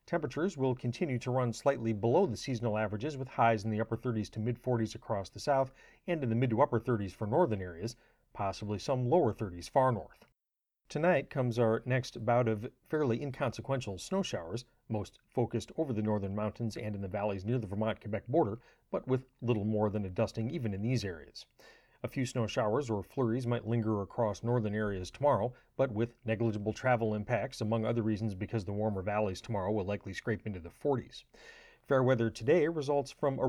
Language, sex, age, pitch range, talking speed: English, male, 40-59, 110-130 Hz, 195 wpm